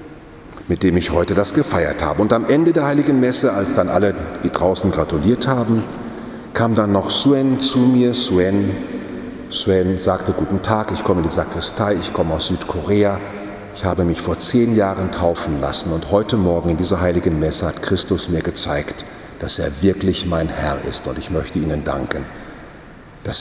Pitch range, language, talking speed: 85-100 Hz, German, 180 wpm